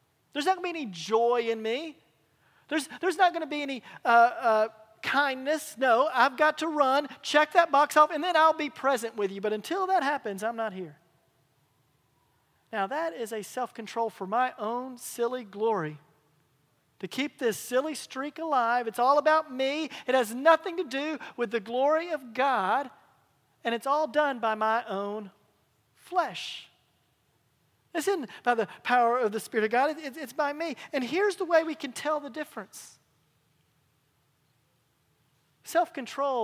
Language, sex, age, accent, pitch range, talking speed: English, male, 40-59, American, 195-290 Hz, 175 wpm